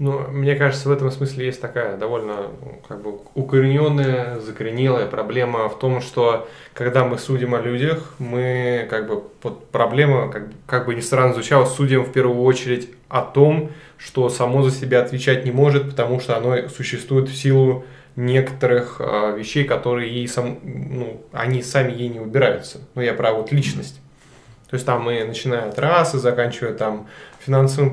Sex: male